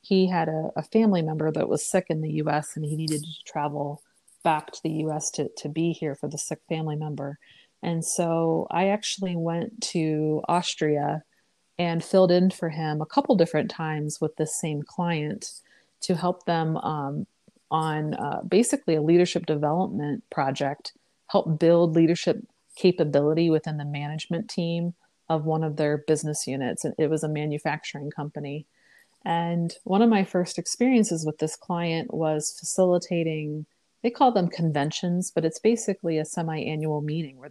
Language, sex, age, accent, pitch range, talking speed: English, female, 30-49, American, 155-185 Hz, 165 wpm